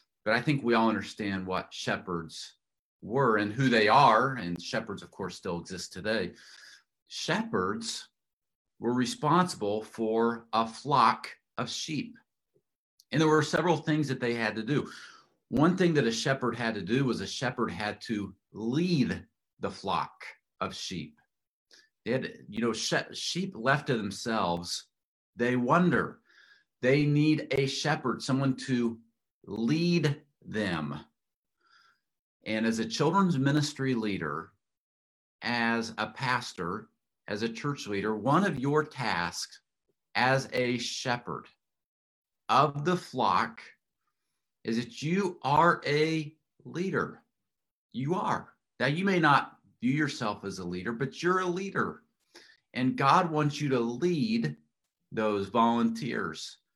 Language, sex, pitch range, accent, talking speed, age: English, male, 115-150 Hz, American, 135 wpm, 40-59